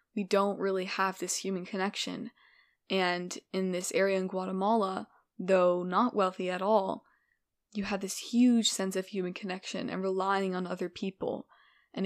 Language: English